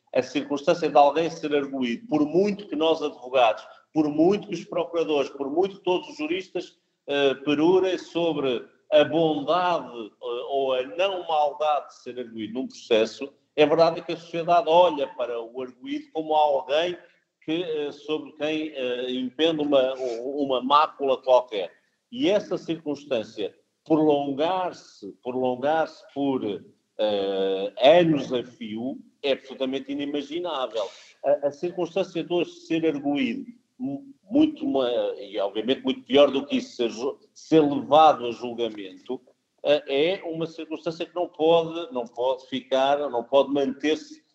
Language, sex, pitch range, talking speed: Portuguese, male, 130-175 Hz, 130 wpm